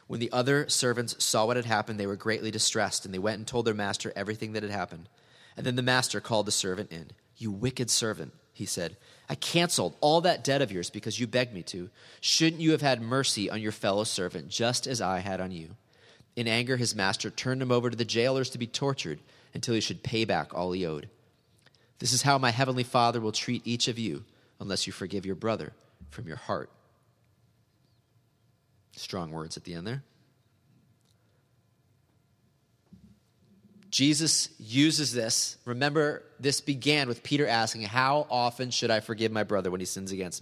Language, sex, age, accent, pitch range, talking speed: English, male, 30-49, American, 110-130 Hz, 190 wpm